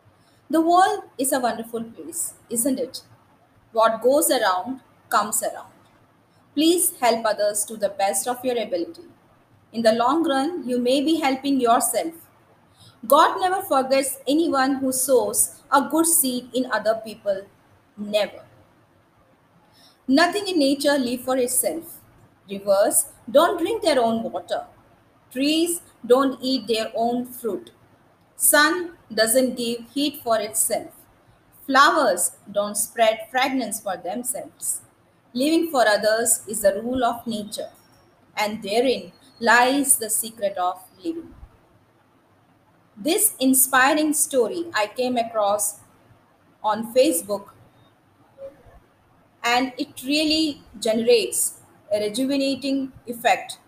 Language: English